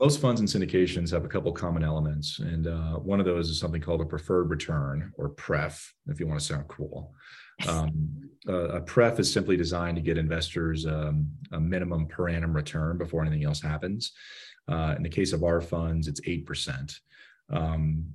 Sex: male